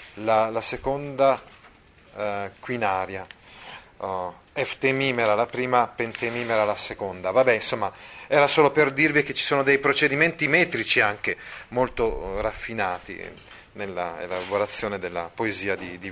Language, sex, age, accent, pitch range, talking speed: Italian, male, 30-49, native, 100-135 Hz, 125 wpm